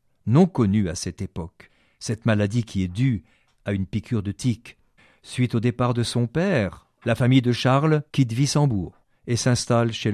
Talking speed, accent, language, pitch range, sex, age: 180 wpm, French, French, 100-130 Hz, male, 50-69